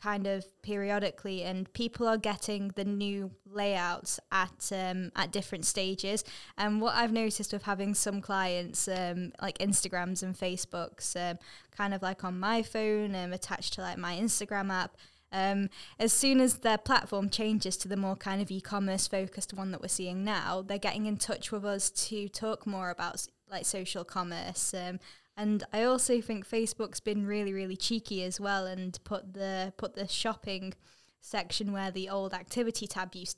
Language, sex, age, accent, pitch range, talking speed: English, female, 10-29, British, 185-210 Hz, 180 wpm